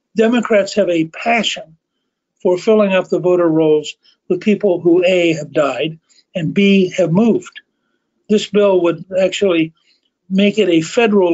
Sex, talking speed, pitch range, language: male, 150 wpm, 175-215 Hz, English